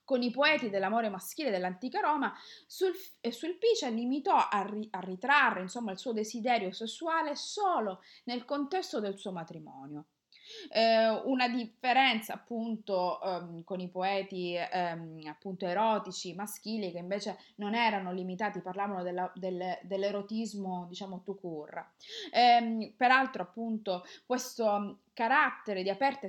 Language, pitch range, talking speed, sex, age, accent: Italian, 190-260 Hz, 125 wpm, female, 20-39, native